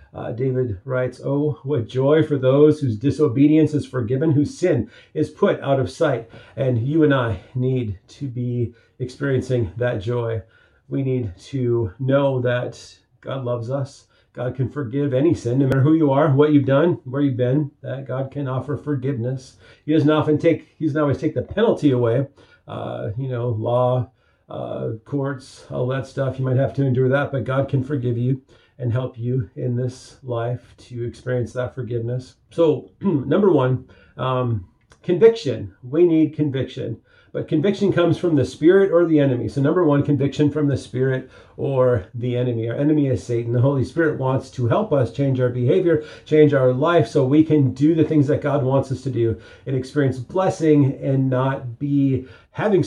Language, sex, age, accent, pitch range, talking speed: English, male, 40-59, American, 120-145 Hz, 180 wpm